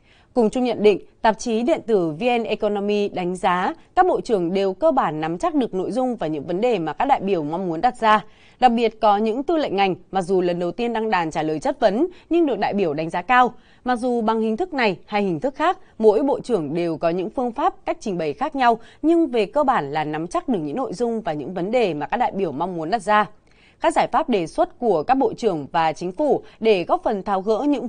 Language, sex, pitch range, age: Vietnamese, female, 190-270 Hz, 20-39